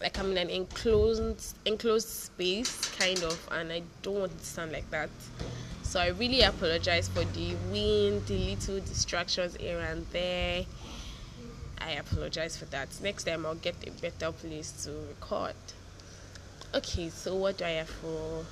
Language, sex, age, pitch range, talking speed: English, female, 10-29, 160-200 Hz, 165 wpm